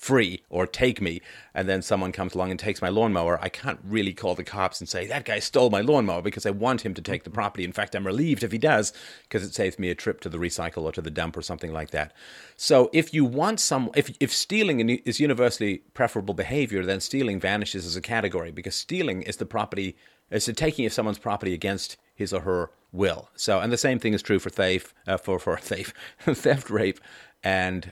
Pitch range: 90-115 Hz